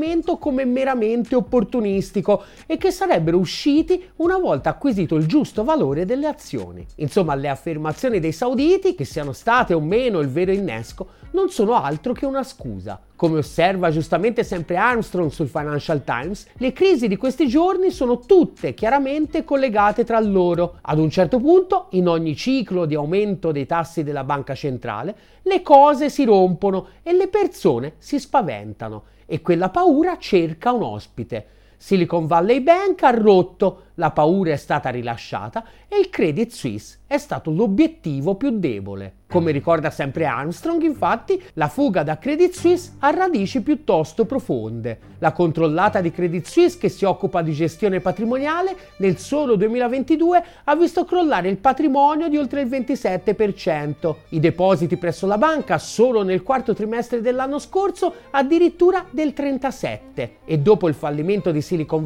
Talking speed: 155 wpm